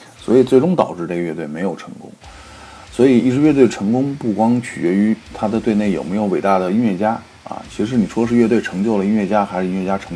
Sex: male